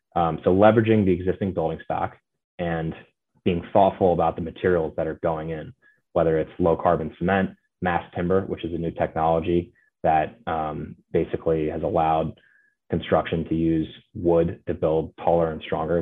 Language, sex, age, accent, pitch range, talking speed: English, male, 20-39, American, 80-95 Hz, 160 wpm